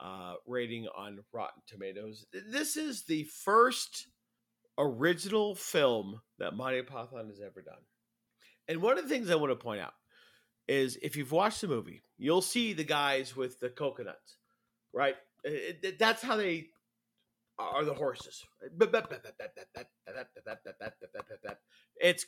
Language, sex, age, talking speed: English, male, 40-59, 135 wpm